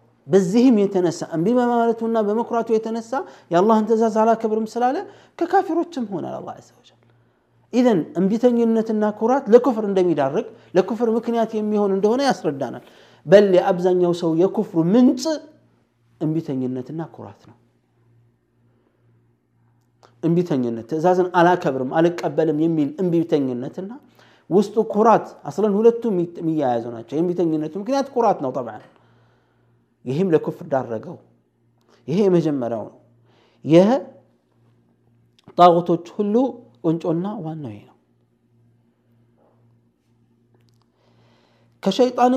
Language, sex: Amharic, male